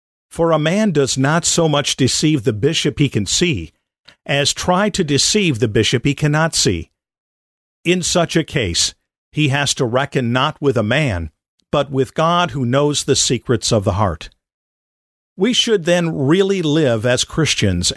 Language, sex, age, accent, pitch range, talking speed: English, male, 50-69, American, 110-155 Hz, 170 wpm